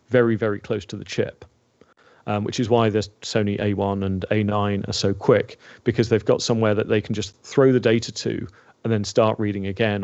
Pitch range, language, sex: 105-120 Hz, English, male